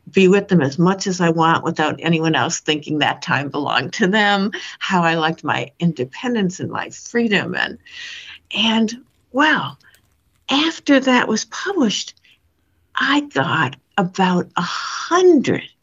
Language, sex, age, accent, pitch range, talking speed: English, female, 60-79, American, 180-275 Hz, 140 wpm